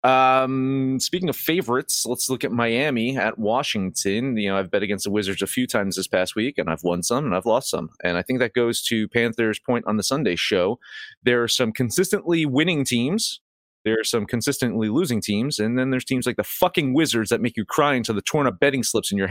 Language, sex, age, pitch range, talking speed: English, male, 30-49, 95-135 Hz, 235 wpm